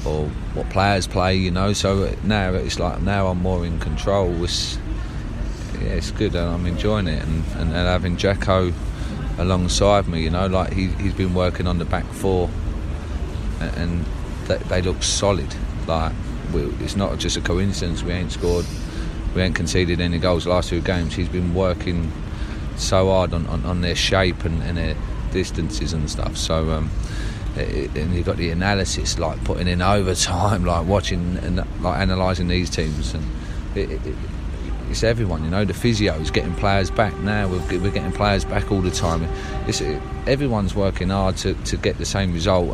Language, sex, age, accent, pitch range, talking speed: English, male, 30-49, British, 80-95 Hz, 180 wpm